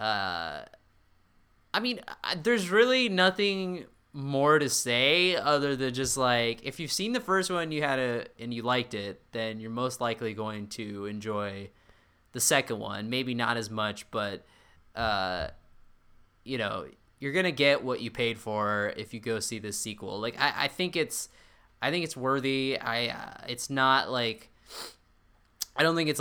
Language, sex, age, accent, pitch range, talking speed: English, male, 20-39, American, 105-130 Hz, 175 wpm